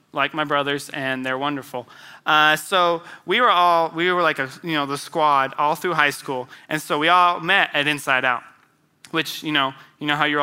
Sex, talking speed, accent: male, 215 wpm, American